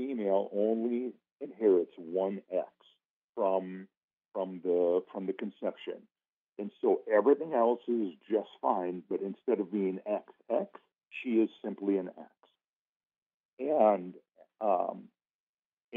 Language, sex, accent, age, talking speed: English, male, American, 50-69, 115 wpm